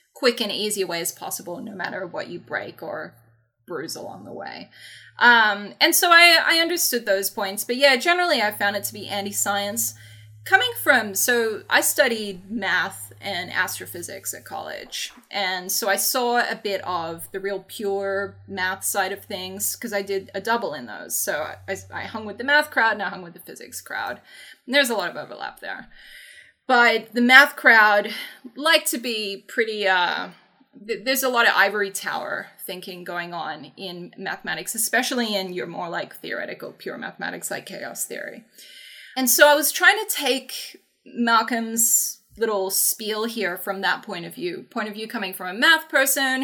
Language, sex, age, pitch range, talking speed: English, female, 20-39, 195-260 Hz, 180 wpm